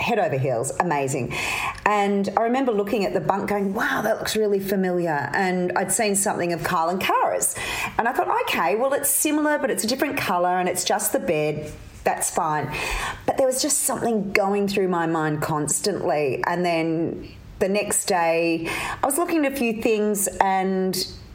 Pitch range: 155-225 Hz